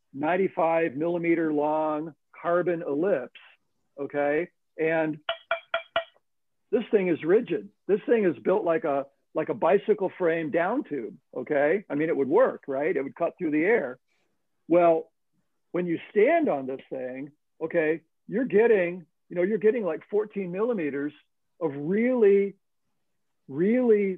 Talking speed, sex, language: 140 wpm, male, English